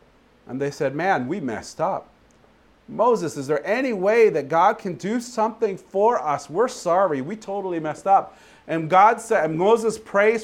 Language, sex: Japanese, male